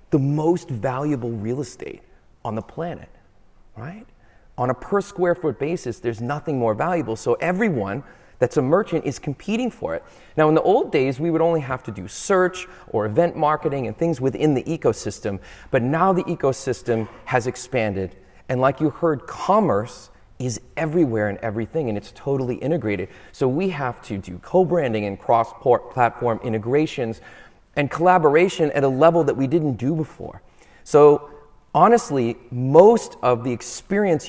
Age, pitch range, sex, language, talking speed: 30-49, 115-155 Hz, male, English, 160 wpm